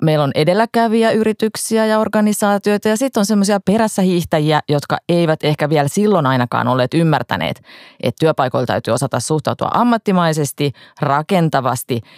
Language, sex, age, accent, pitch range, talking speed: Finnish, female, 30-49, native, 130-185 Hz, 130 wpm